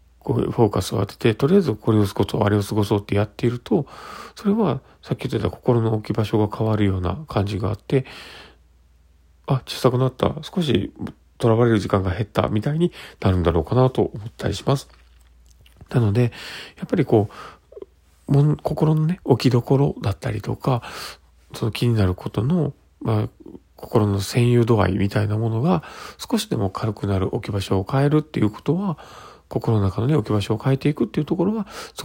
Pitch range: 95-130 Hz